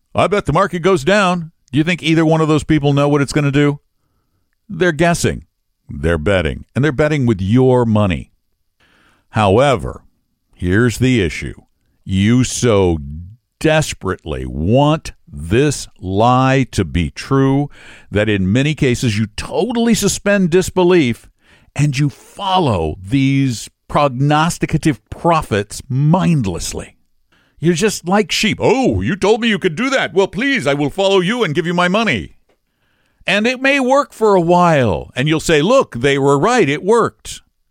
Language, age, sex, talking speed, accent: English, 60-79, male, 155 wpm, American